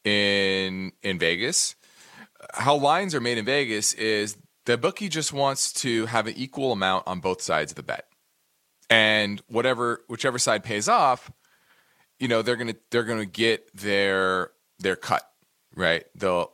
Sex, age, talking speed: male, 30-49, 155 wpm